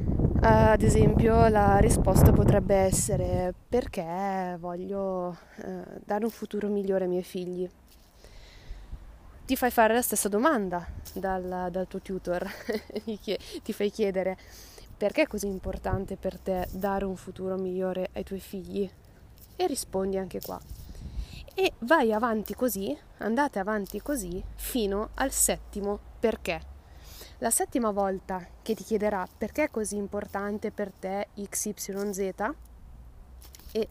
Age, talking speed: 20-39, 125 wpm